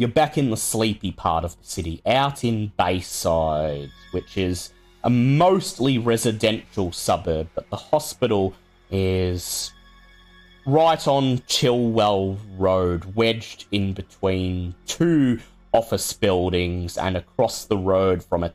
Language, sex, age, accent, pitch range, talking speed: English, male, 30-49, Australian, 90-110 Hz, 125 wpm